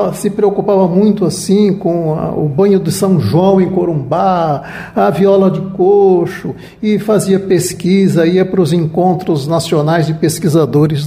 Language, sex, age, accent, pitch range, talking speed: Portuguese, male, 60-79, Brazilian, 160-195 Hz, 135 wpm